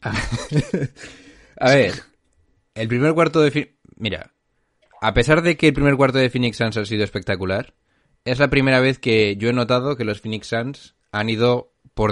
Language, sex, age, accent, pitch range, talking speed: Spanish, male, 20-39, Spanish, 100-120 Hz, 185 wpm